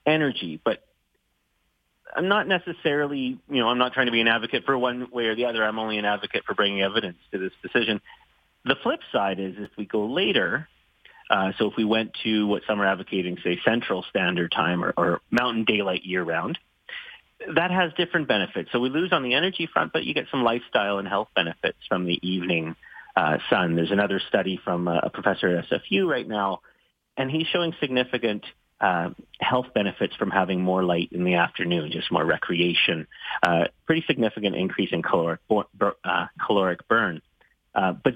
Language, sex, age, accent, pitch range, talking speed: English, male, 30-49, American, 95-130 Hz, 185 wpm